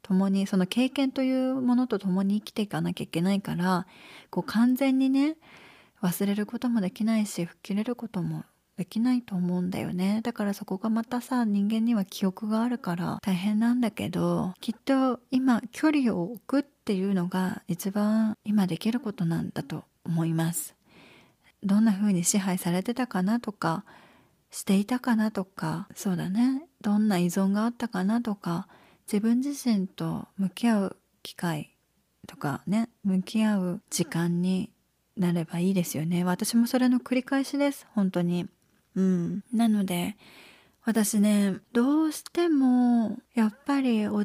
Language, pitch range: Japanese, 185-240 Hz